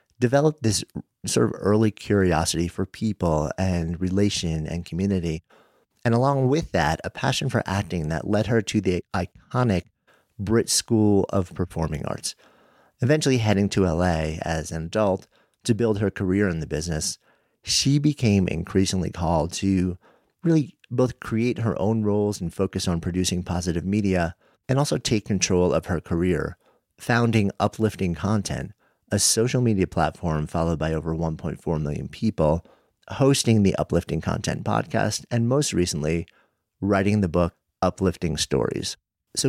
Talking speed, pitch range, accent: 145 wpm, 85-110 Hz, American